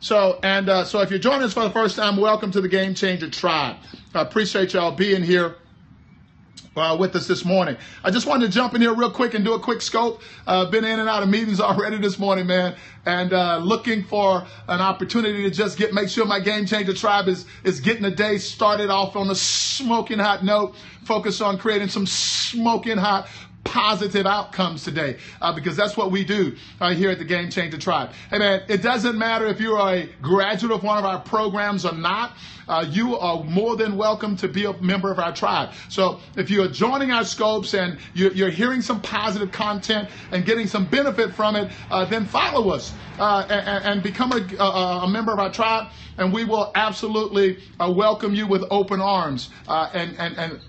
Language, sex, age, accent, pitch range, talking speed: English, male, 50-69, American, 185-215 Hz, 215 wpm